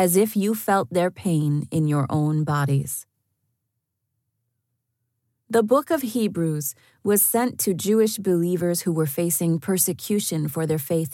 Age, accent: 30-49, American